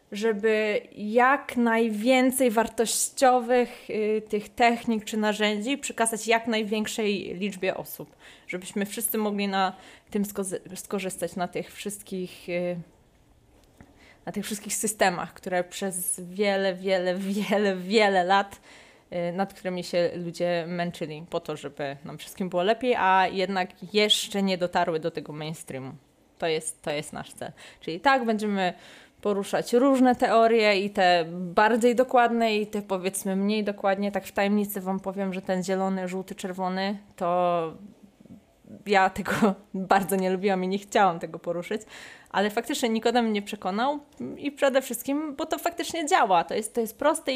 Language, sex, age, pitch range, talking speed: Polish, female, 20-39, 185-230 Hz, 145 wpm